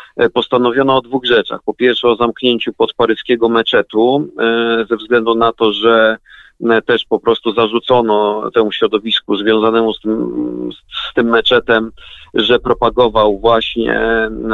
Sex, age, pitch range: male, 40-59, 115-135 Hz